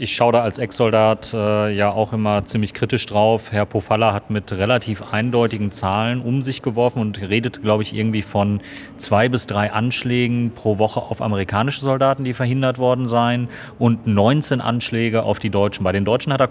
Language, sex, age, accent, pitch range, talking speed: German, male, 30-49, German, 105-125 Hz, 185 wpm